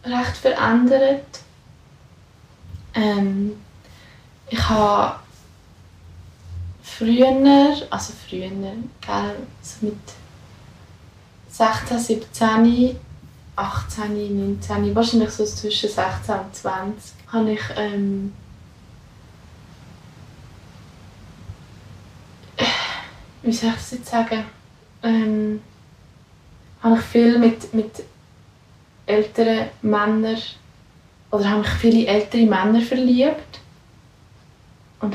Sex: female